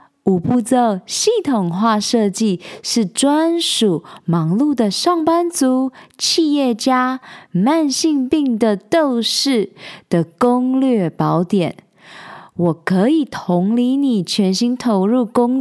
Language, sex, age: Chinese, female, 20-39